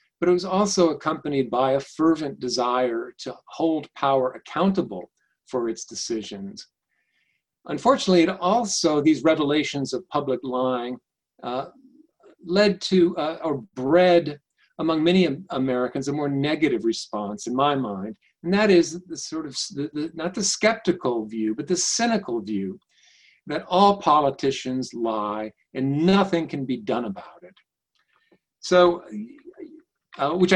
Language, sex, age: English, male, 50-69